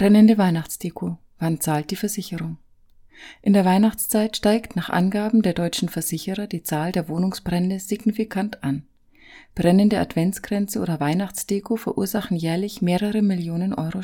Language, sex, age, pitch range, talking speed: German, female, 30-49, 170-210 Hz, 130 wpm